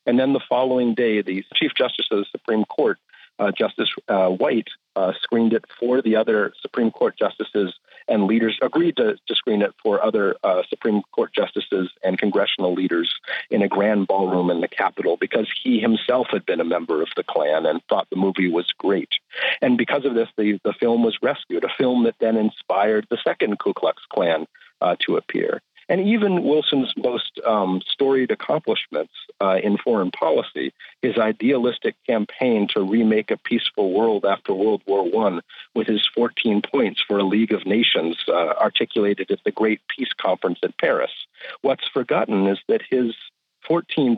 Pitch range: 105-160 Hz